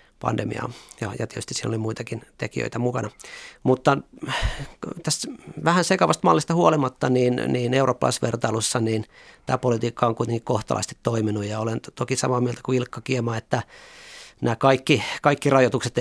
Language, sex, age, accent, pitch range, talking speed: Finnish, male, 40-59, native, 115-135 Hz, 140 wpm